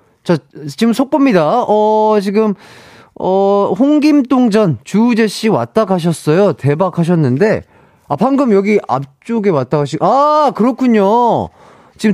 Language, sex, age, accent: Korean, male, 30-49, native